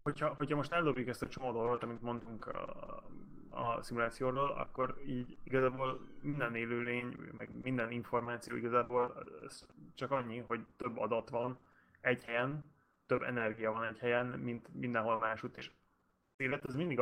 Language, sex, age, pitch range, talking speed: Hungarian, male, 20-39, 110-125 Hz, 145 wpm